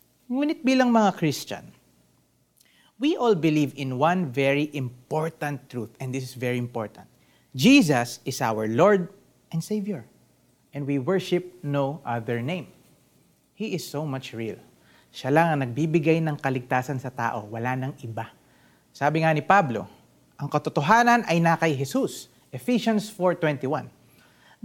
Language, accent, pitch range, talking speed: Filipino, native, 130-220 Hz, 140 wpm